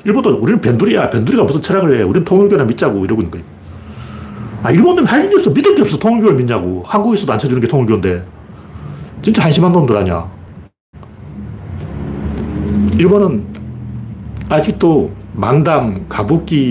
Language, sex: Korean, male